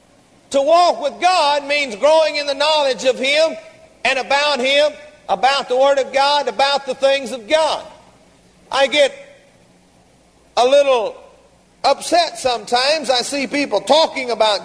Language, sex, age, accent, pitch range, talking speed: English, male, 50-69, American, 275-315 Hz, 145 wpm